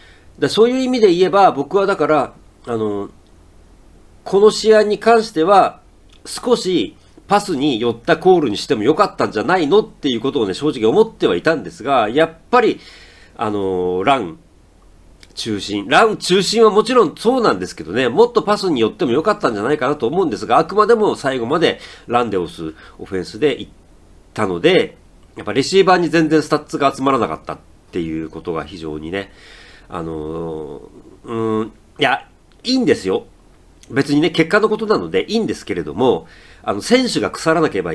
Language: Japanese